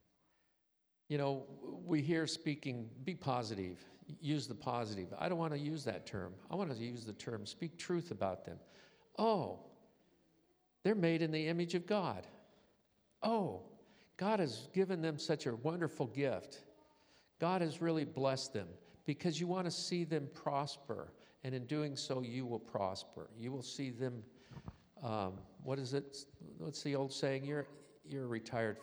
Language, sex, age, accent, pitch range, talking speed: English, male, 50-69, American, 115-155 Hz, 165 wpm